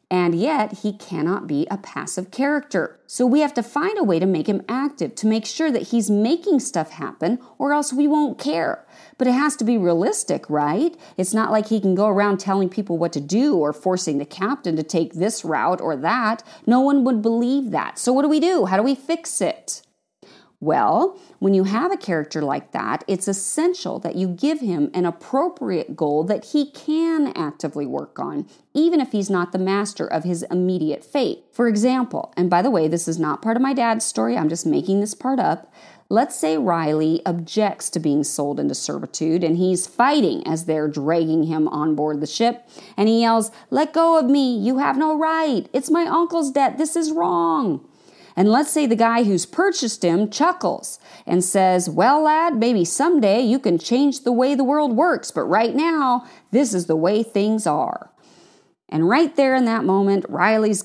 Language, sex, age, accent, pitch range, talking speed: English, female, 40-59, American, 180-280 Hz, 205 wpm